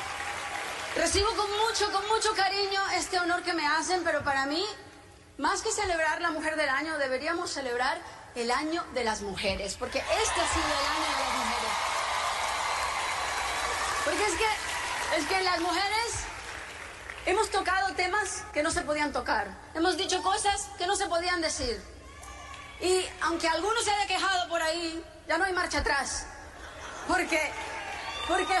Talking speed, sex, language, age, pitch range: 155 wpm, female, Spanish, 30-49, 295-385 Hz